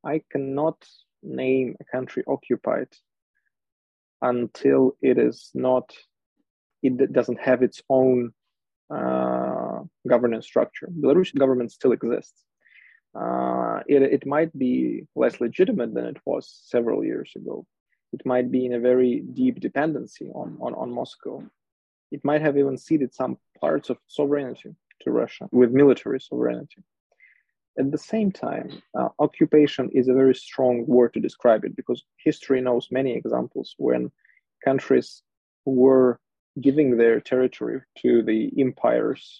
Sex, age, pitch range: male, 20-39, 120-140 Hz